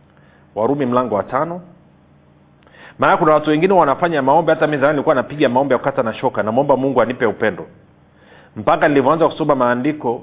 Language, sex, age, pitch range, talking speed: Swahili, male, 40-59, 135-170 Hz, 170 wpm